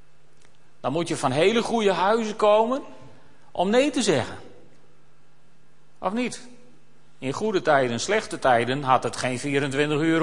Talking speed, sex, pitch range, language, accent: 145 wpm, male, 155-210 Hz, Dutch, Dutch